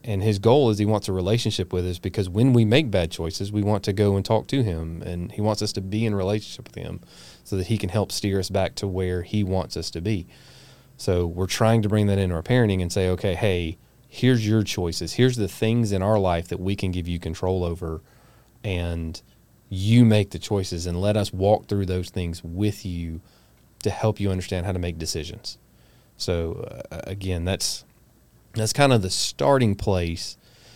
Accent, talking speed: American, 215 wpm